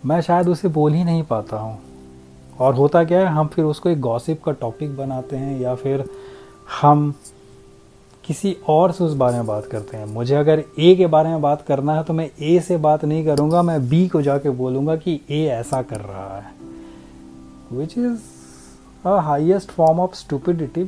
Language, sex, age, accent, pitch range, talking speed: Hindi, male, 30-49, native, 120-170 Hz, 195 wpm